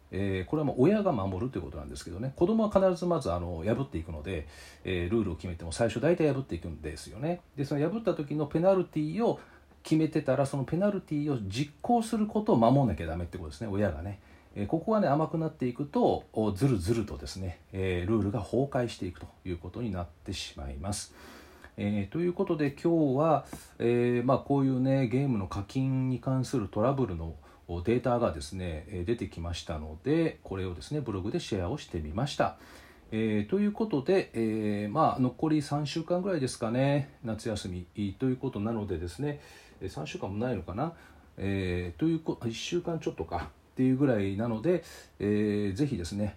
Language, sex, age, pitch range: Japanese, male, 40-59, 95-145 Hz